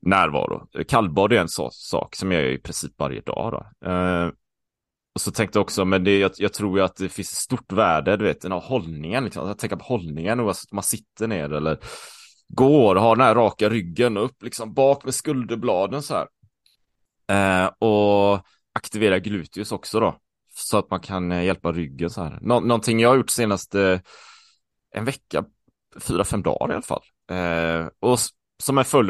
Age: 20-39